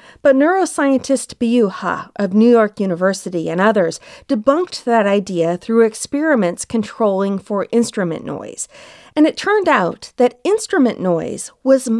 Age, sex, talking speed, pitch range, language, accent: 40-59, female, 135 wpm, 200-285 Hz, English, American